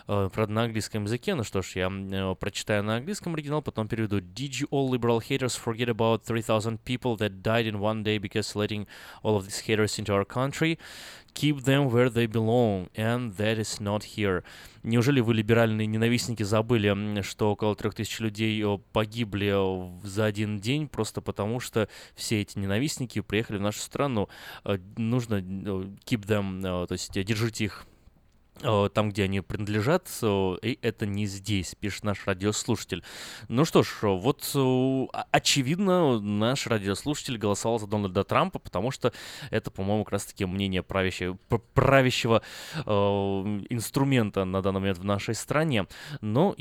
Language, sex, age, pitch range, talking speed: Russian, male, 20-39, 100-120 Hz, 120 wpm